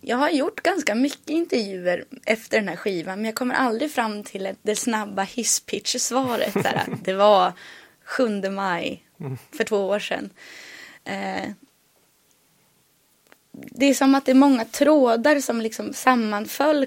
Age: 20-39